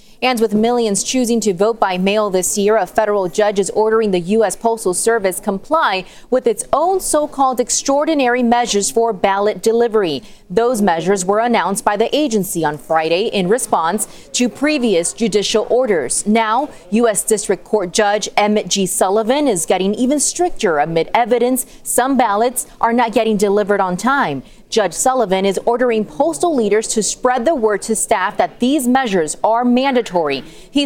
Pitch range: 195-245 Hz